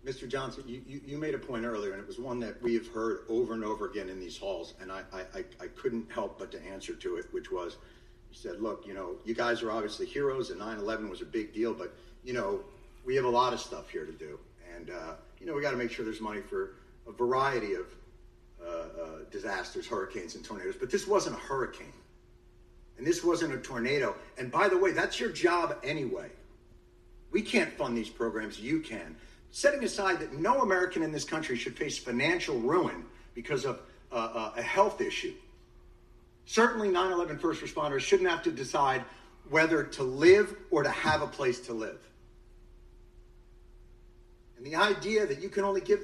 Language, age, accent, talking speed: English, 50-69, American, 200 wpm